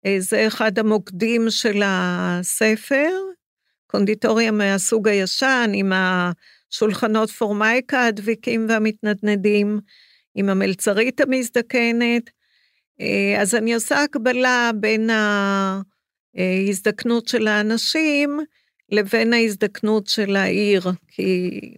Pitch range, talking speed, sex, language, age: 200-235 Hz, 80 wpm, female, Hebrew, 50-69